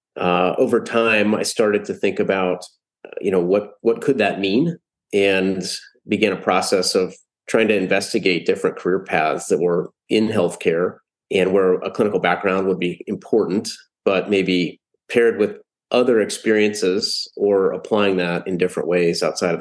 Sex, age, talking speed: male, 30-49, 160 wpm